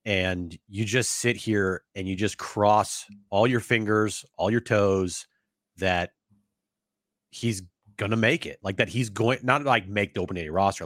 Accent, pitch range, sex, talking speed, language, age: American, 95-120 Hz, male, 175 wpm, English, 30-49